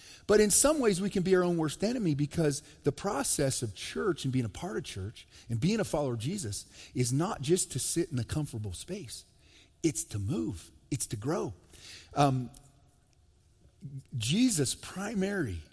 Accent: American